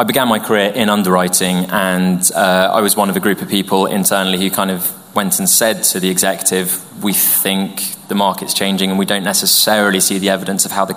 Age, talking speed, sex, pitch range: 20-39, 225 wpm, male, 95-105 Hz